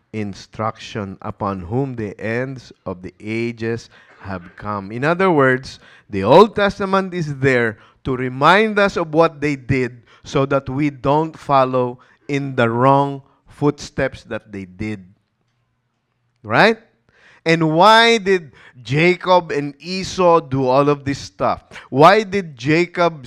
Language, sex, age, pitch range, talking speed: English, male, 20-39, 115-155 Hz, 135 wpm